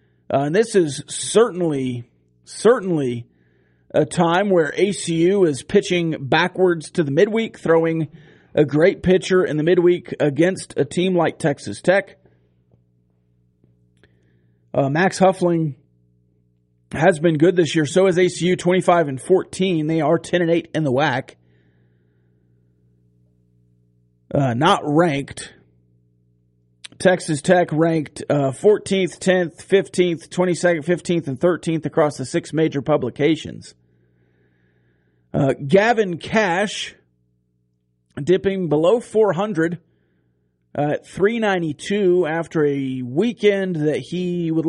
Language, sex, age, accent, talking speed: English, male, 40-59, American, 115 wpm